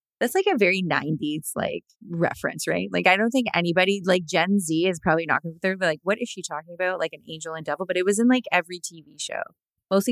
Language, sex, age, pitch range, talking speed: English, female, 20-39, 160-210 Hz, 250 wpm